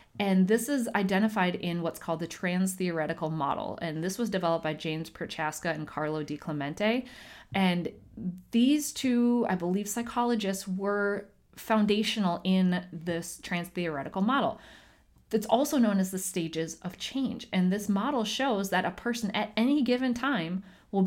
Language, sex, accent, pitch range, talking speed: English, female, American, 165-215 Hz, 150 wpm